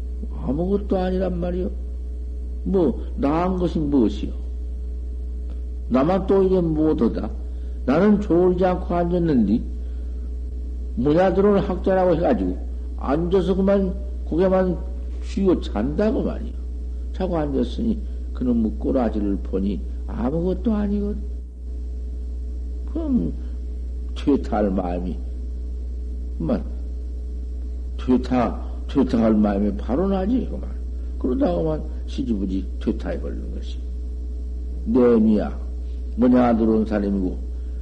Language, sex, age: Korean, male, 60-79